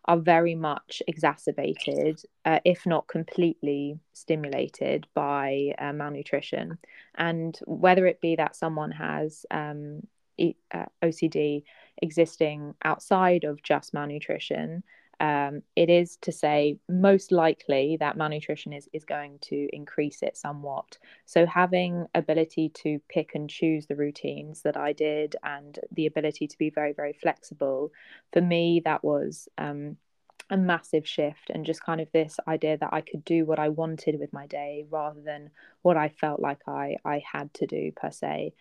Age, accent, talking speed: 20-39, British, 155 wpm